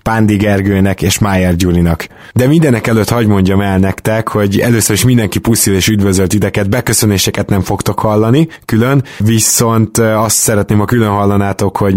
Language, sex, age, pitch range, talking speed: Hungarian, male, 20-39, 100-115 Hz, 165 wpm